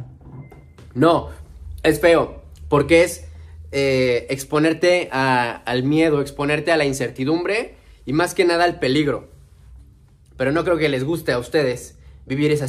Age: 30-49